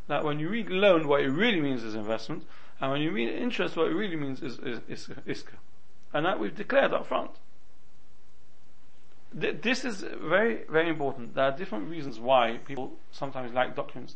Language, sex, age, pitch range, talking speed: English, male, 40-59, 130-170 Hz, 190 wpm